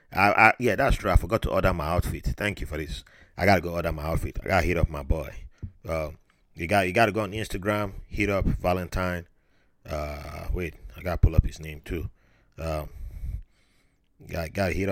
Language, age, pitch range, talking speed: English, 30-49, 80-100 Hz, 215 wpm